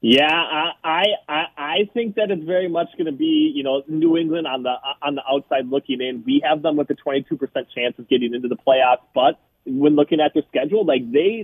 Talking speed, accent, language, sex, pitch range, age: 225 wpm, American, English, male, 120-155 Hz, 20-39